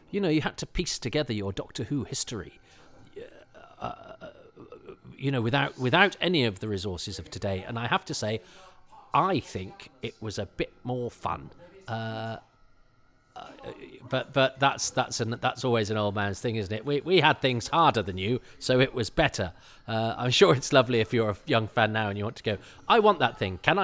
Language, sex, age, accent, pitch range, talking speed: English, male, 40-59, British, 105-135 Hz, 210 wpm